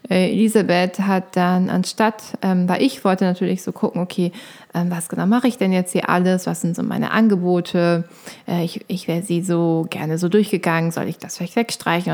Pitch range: 180-215 Hz